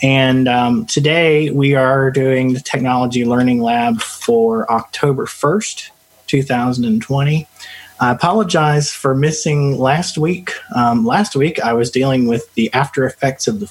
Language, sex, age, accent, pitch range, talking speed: English, male, 30-49, American, 120-140 Hz, 155 wpm